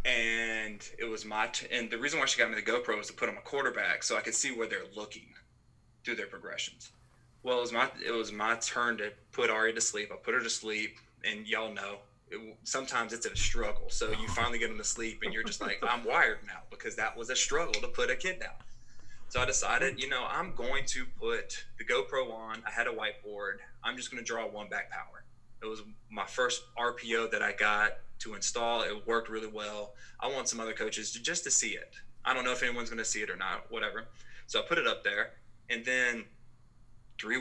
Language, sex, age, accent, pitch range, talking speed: English, male, 20-39, American, 110-120 Hz, 235 wpm